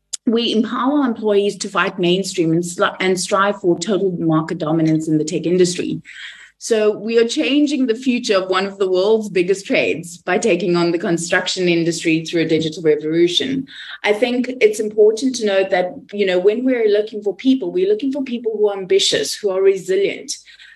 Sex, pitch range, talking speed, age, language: female, 180-240 Hz, 190 wpm, 30-49, English